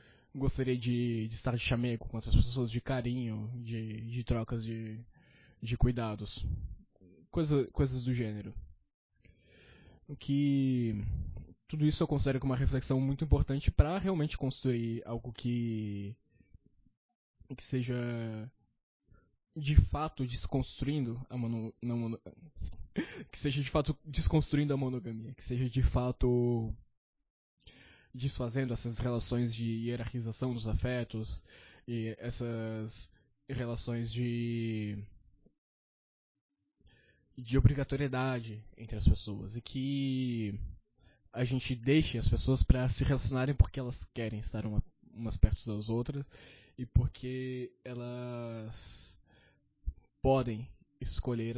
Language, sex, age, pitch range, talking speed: Portuguese, male, 20-39, 110-130 Hz, 110 wpm